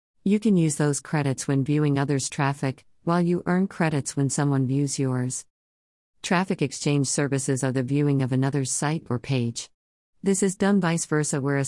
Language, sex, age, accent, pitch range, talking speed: English, female, 50-69, American, 130-160 Hz, 180 wpm